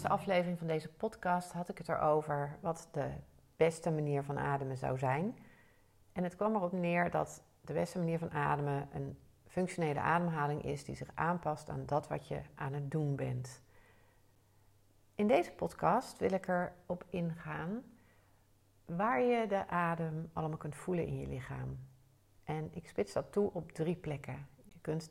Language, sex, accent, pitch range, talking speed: Dutch, female, Dutch, 135-190 Hz, 165 wpm